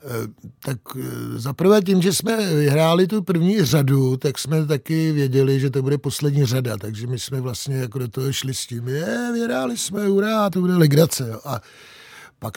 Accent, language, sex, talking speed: native, Czech, male, 175 wpm